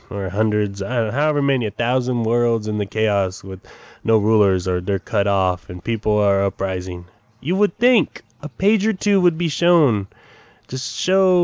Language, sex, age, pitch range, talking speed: English, male, 20-39, 105-165 Hz, 190 wpm